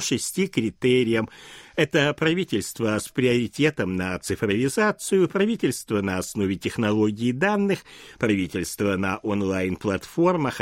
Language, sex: Russian, male